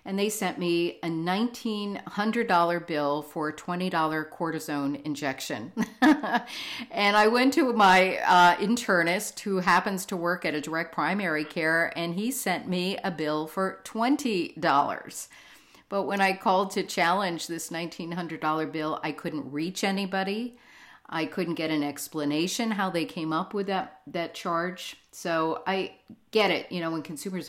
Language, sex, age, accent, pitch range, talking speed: English, female, 50-69, American, 155-200 Hz, 155 wpm